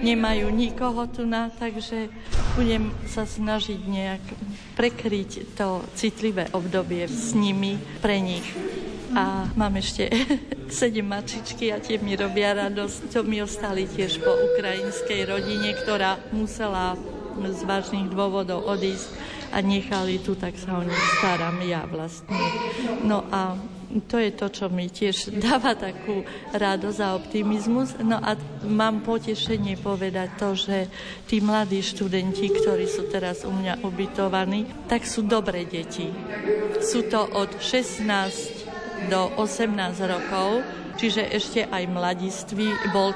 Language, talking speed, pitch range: Slovak, 135 wpm, 190-220 Hz